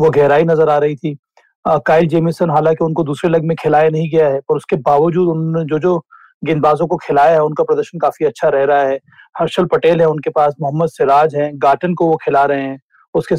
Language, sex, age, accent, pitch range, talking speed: Hindi, male, 30-49, native, 145-170 Hz, 210 wpm